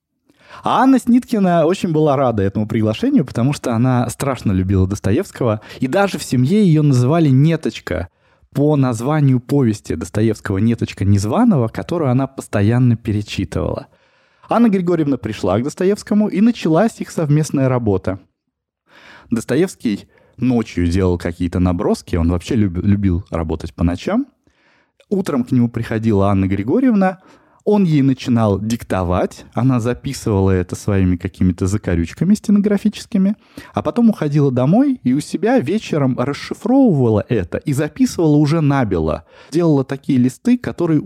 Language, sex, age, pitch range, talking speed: Russian, male, 20-39, 105-170 Hz, 125 wpm